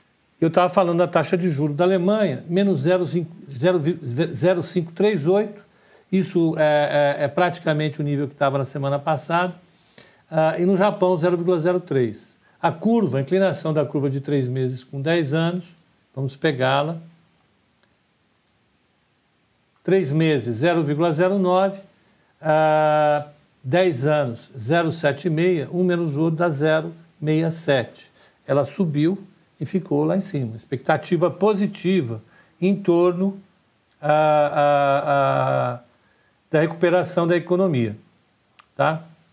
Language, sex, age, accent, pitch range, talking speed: Portuguese, male, 60-79, Brazilian, 140-180 Hz, 110 wpm